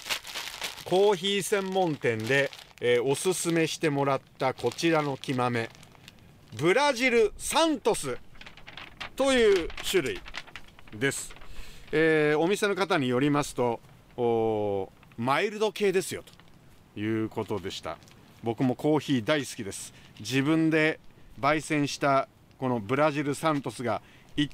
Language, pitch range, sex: Japanese, 125-195 Hz, male